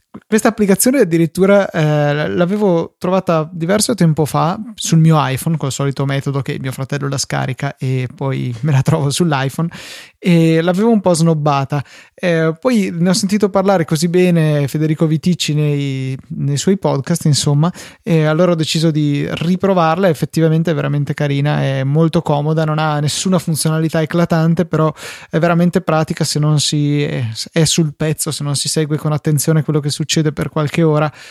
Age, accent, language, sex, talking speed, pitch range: 20-39, native, Italian, male, 165 wpm, 145-170 Hz